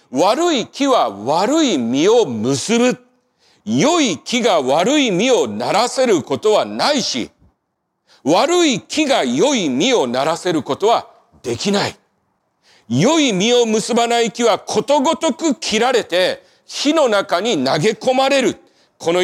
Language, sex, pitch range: Japanese, male, 185-280 Hz